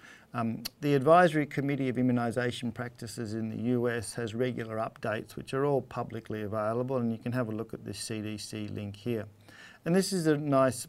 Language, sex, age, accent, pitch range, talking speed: English, male, 50-69, Australian, 115-150 Hz, 185 wpm